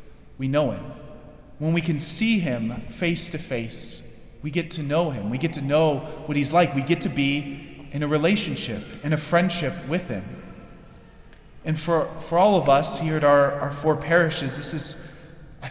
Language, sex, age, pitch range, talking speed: English, male, 30-49, 140-175 Hz, 190 wpm